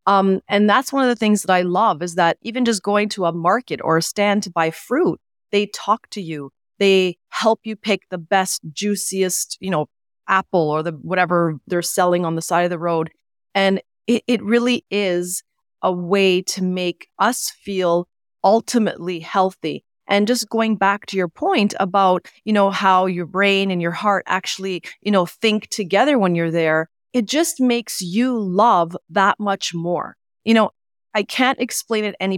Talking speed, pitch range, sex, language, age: 185 wpm, 180-220 Hz, female, English, 30-49